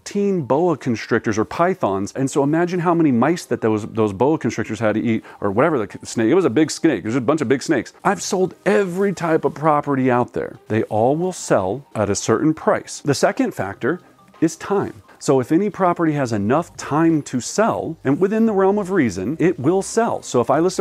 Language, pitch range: English, 110-160 Hz